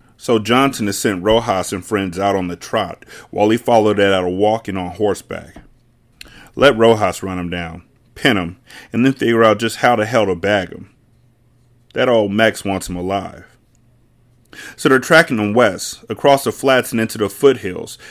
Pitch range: 100-120 Hz